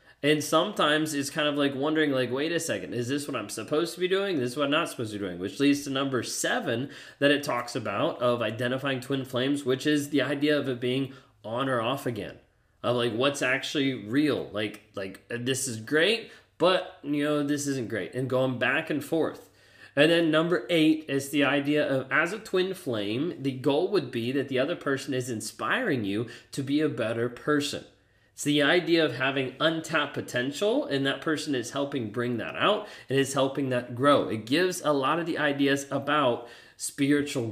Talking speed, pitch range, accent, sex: 210 wpm, 120-150 Hz, American, male